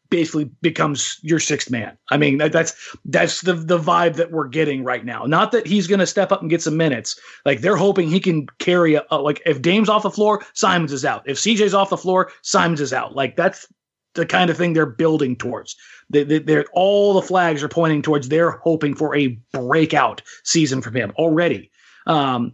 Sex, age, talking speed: male, 30-49, 220 wpm